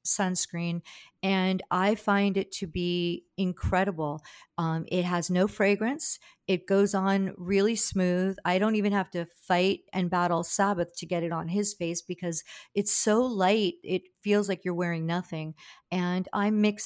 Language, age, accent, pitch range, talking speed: English, 50-69, American, 170-195 Hz, 165 wpm